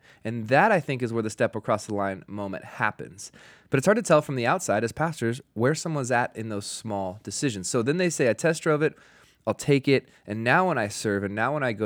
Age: 20-39